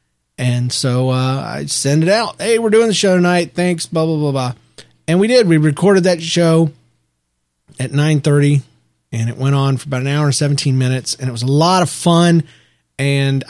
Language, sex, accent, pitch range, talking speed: English, male, American, 130-165 Hz, 205 wpm